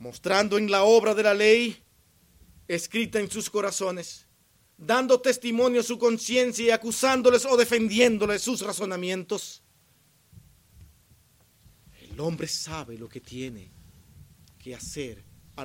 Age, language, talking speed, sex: 40-59, Spanish, 120 wpm, male